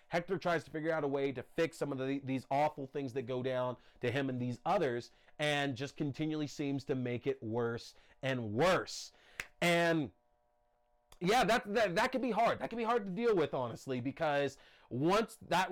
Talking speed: 200 wpm